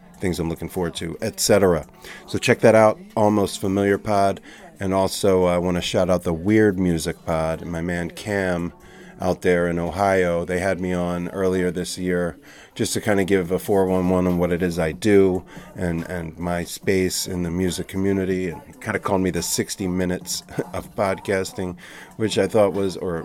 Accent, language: American, English